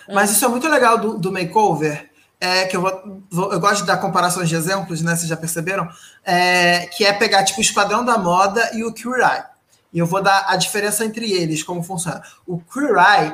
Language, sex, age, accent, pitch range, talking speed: Portuguese, male, 20-39, Brazilian, 180-225 Hz, 220 wpm